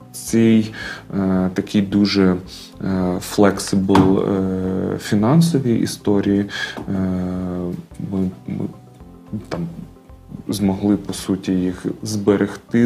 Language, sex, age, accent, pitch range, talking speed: Ukrainian, male, 30-49, native, 90-100 Hz, 75 wpm